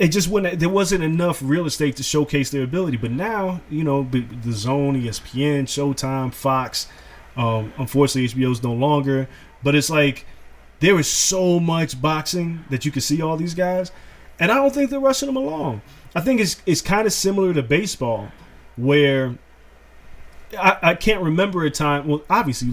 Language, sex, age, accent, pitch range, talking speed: English, male, 30-49, American, 135-180 Hz, 180 wpm